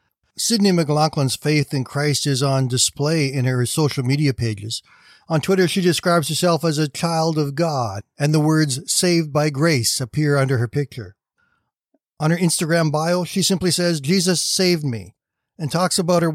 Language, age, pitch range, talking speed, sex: English, 60-79, 145-175 Hz, 175 wpm, male